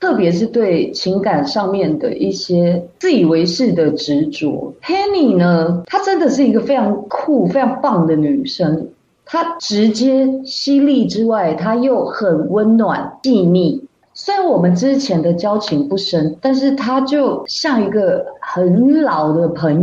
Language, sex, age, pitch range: Chinese, female, 30-49, 170-250 Hz